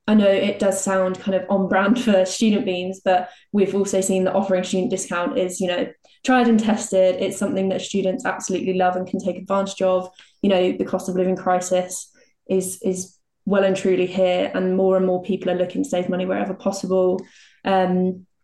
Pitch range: 185-205 Hz